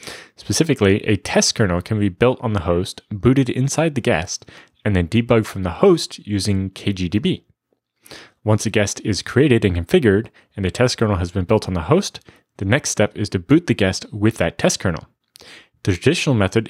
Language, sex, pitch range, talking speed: English, male, 90-115 Hz, 195 wpm